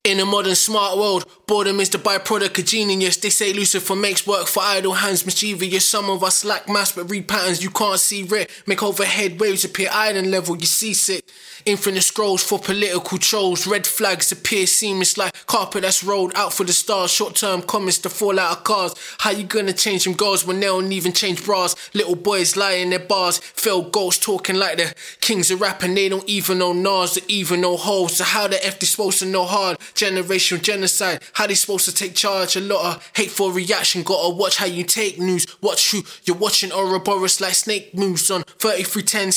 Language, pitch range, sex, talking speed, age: English, 185-205 Hz, male, 210 wpm, 20-39